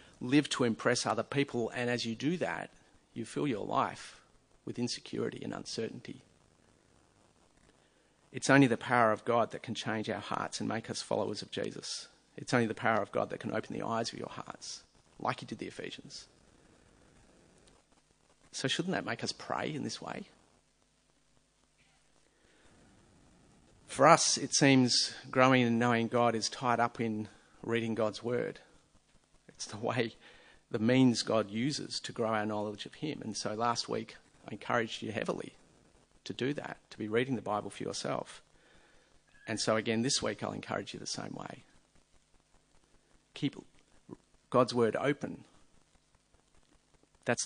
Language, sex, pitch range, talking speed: English, male, 110-135 Hz, 160 wpm